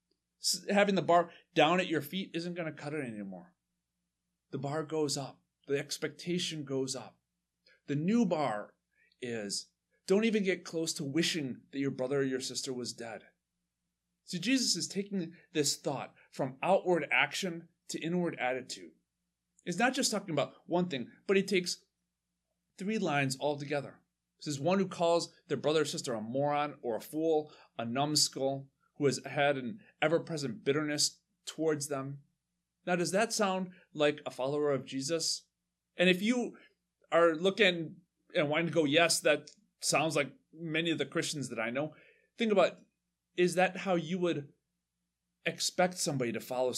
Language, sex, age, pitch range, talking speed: English, male, 30-49, 130-180 Hz, 165 wpm